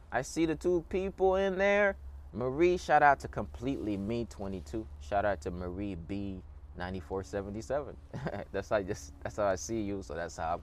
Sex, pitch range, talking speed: male, 85-140 Hz, 165 wpm